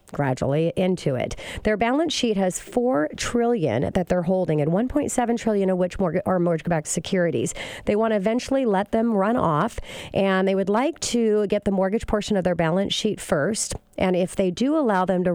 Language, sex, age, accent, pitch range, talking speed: English, female, 40-59, American, 170-215 Hz, 190 wpm